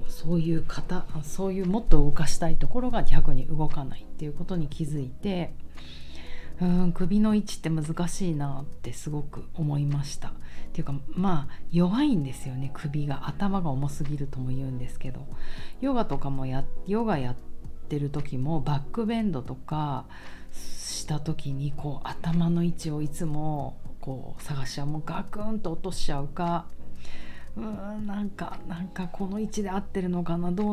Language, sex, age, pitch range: Japanese, female, 40-59, 135-175 Hz